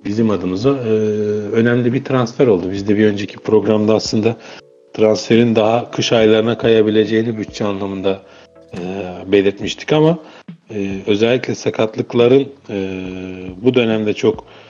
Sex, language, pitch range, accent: male, Turkish, 95-115 Hz, native